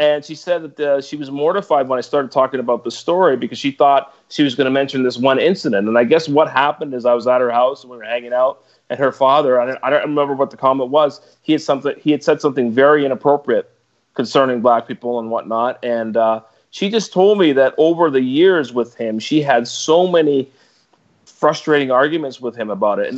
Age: 40-59